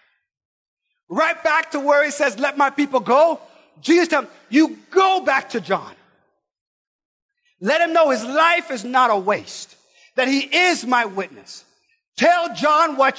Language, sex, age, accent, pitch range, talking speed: English, male, 50-69, American, 230-290 Hz, 160 wpm